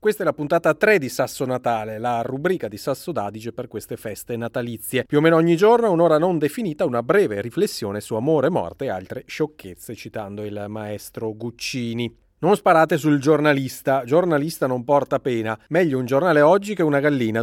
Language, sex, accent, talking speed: Italian, male, native, 185 wpm